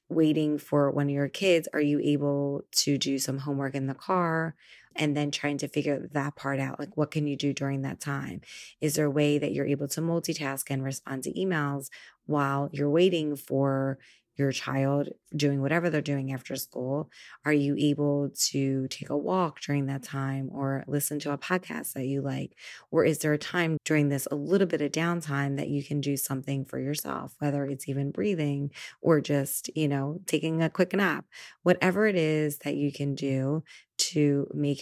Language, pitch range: English, 140-155 Hz